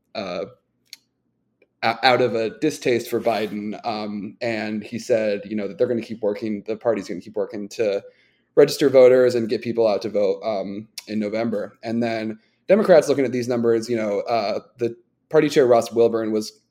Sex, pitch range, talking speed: male, 110-125 Hz, 190 wpm